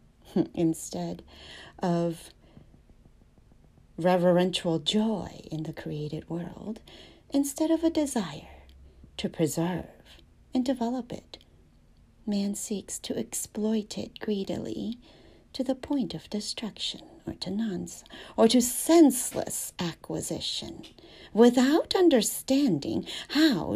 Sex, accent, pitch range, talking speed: female, American, 155-240 Hz, 95 wpm